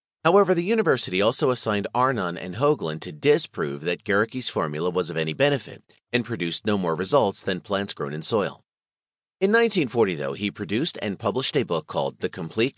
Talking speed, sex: 185 wpm, male